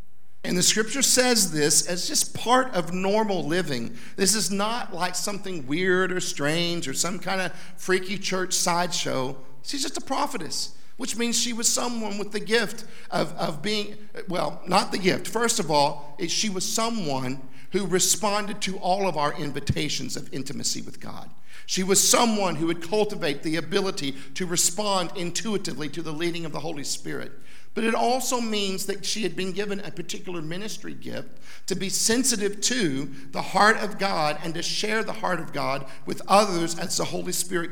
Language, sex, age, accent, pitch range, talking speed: English, male, 50-69, American, 165-210 Hz, 180 wpm